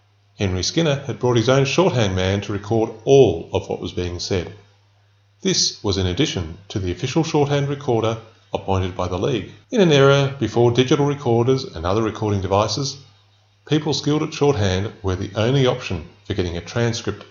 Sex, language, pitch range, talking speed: male, English, 95-135 Hz, 175 wpm